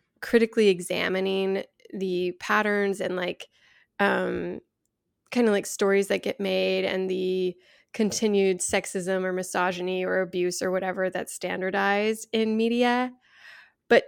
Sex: female